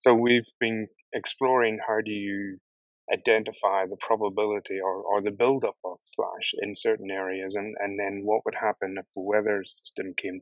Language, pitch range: English, 100-110 Hz